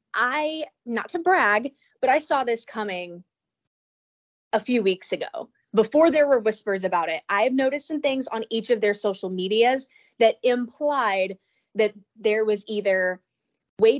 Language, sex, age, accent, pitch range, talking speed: English, female, 20-39, American, 200-250 Hz, 160 wpm